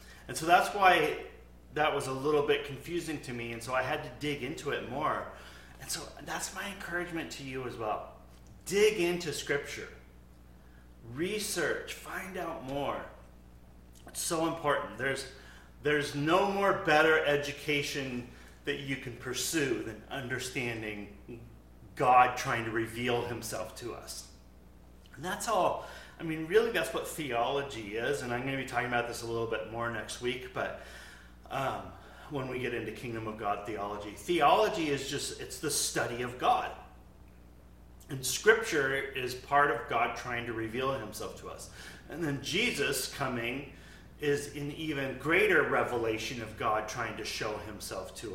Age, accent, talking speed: 30-49, American, 160 wpm